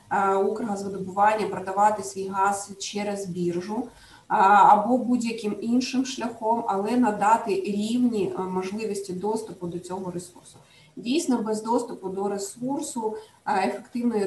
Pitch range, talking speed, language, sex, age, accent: 200-235 Hz, 100 wpm, Ukrainian, female, 20-39, native